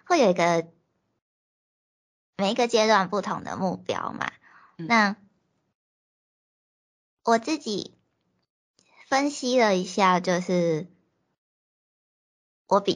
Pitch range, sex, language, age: 170-215 Hz, male, Chinese, 20-39